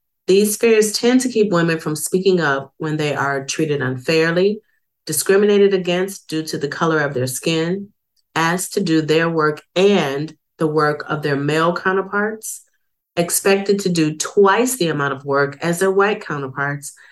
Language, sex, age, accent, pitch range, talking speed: English, female, 40-59, American, 150-195 Hz, 165 wpm